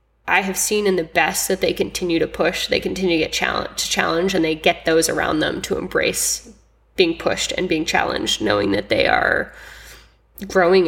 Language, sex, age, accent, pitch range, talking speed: English, female, 10-29, American, 160-190 Hz, 190 wpm